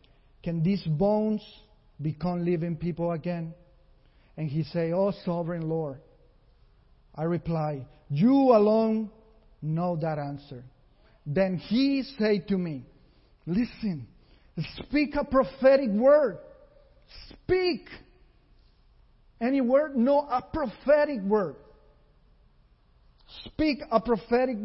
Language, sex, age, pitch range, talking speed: English, male, 40-59, 180-250 Hz, 95 wpm